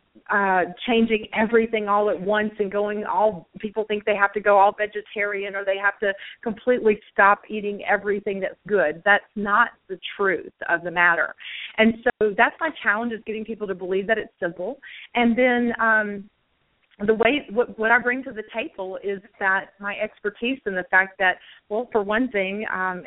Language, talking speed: English, 185 wpm